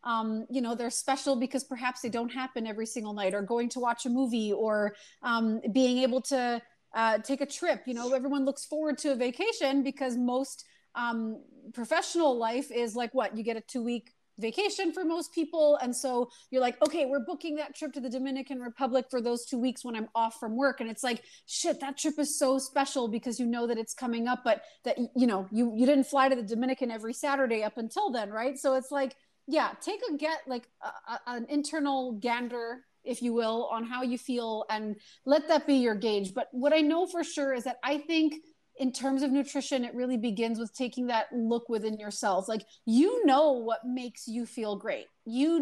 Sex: female